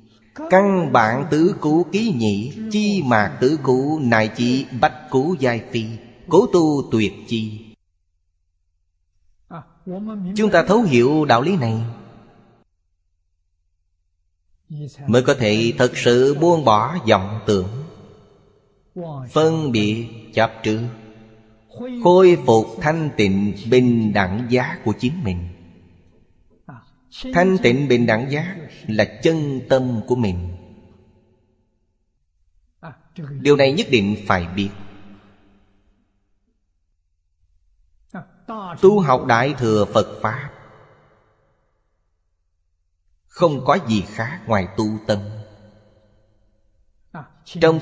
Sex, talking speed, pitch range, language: male, 100 wpm, 100-140 Hz, Vietnamese